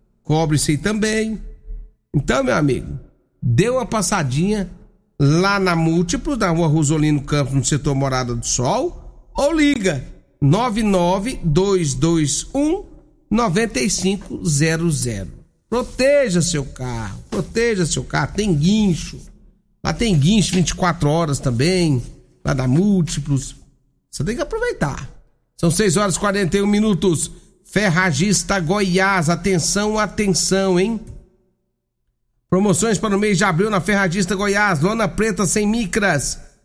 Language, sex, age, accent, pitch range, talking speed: Portuguese, male, 60-79, Brazilian, 160-215 Hz, 115 wpm